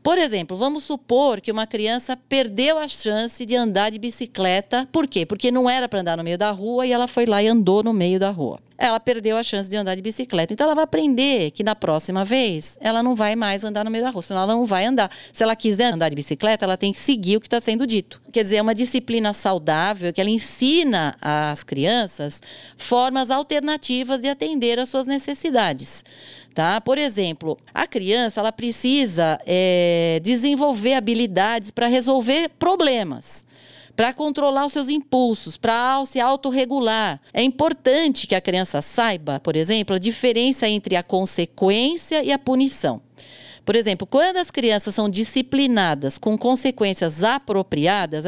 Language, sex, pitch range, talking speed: Portuguese, female, 195-265 Hz, 175 wpm